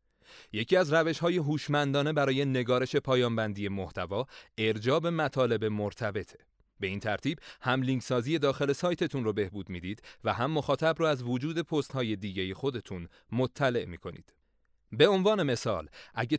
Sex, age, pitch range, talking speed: male, 30-49, 105-145 Hz, 135 wpm